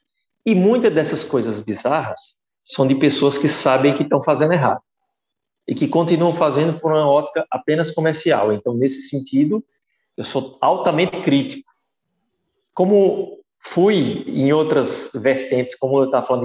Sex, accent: male, Brazilian